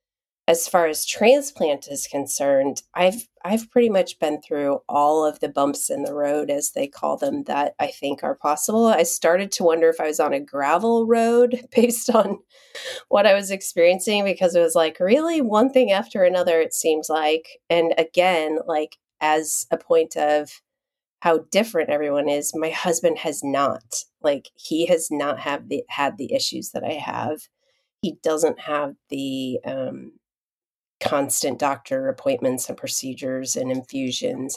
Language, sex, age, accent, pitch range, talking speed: English, female, 30-49, American, 145-240 Hz, 165 wpm